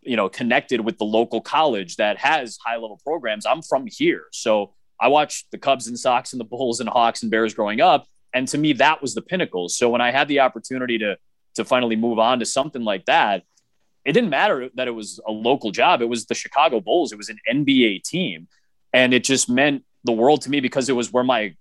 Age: 20-39